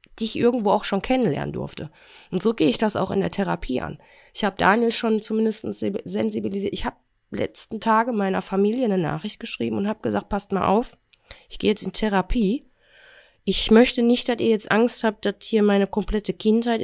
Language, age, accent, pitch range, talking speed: German, 20-39, German, 180-225 Hz, 200 wpm